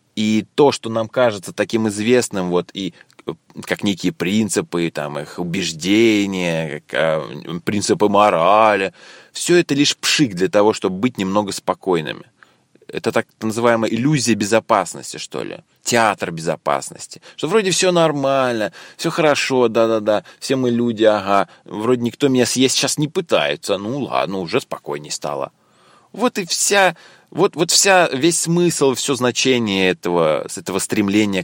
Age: 20-39